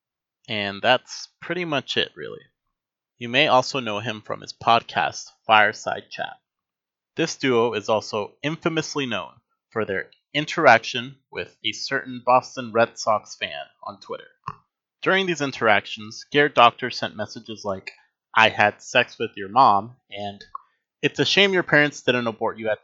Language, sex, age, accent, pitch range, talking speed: English, male, 30-49, American, 110-150 Hz, 150 wpm